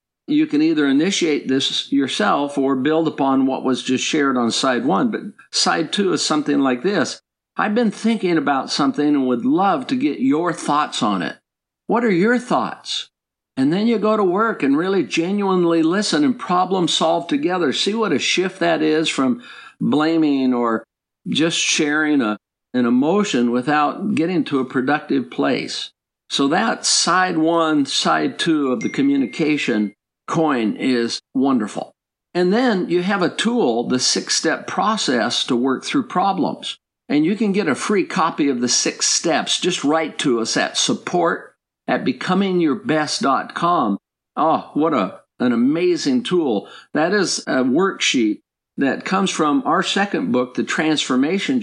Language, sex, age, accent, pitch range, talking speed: English, male, 50-69, American, 145-240 Hz, 160 wpm